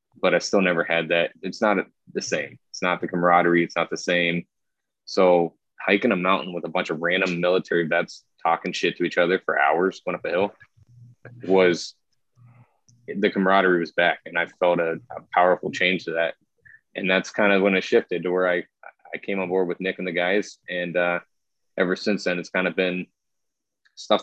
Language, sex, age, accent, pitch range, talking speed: English, male, 20-39, American, 85-100 Hz, 210 wpm